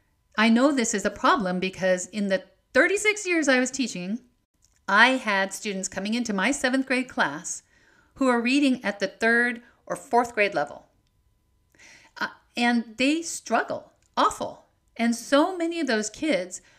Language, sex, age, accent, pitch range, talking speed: English, female, 50-69, American, 180-250 Hz, 155 wpm